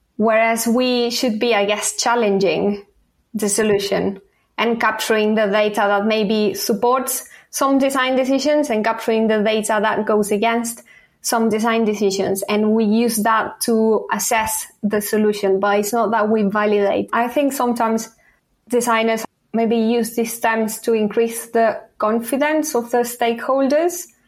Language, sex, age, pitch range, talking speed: English, female, 20-39, 210-235 Hz, 145 wpm